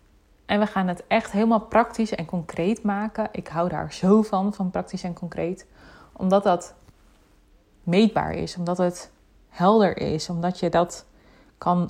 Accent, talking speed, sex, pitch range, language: Dutch, 155 wpm, female, 170-200 Hz, Dutch